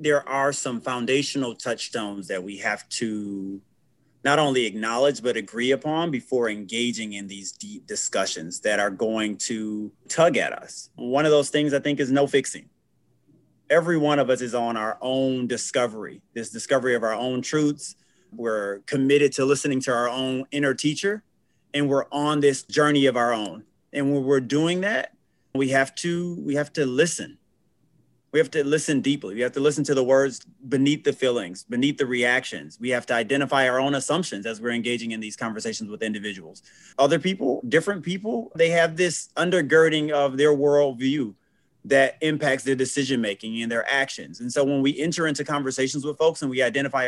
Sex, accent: male, American